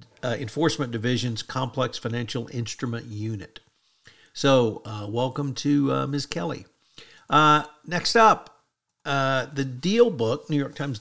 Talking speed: 130 wpm